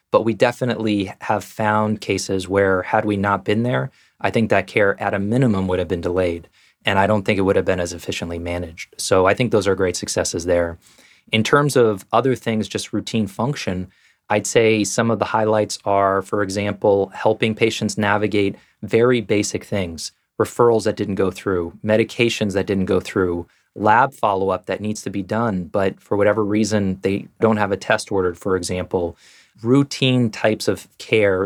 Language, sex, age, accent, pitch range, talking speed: English, male, 20-39, American, 95-115 Hz, 185 wpm